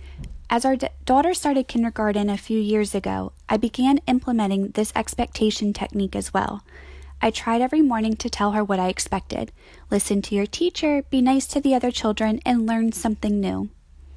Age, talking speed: 10-29, 175 wpm